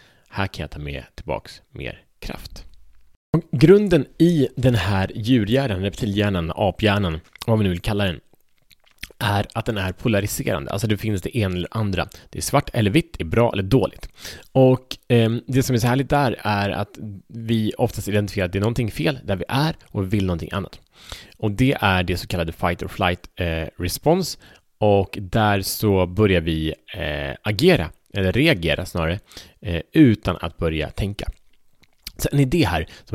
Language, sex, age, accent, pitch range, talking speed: Swedish, male, 30-49, Norwegian, 90-115 Hz, 175 wpm